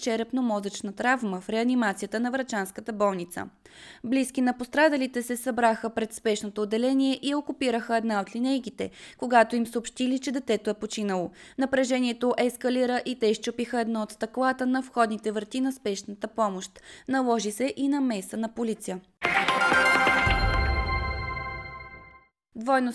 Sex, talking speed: female, 130 wpm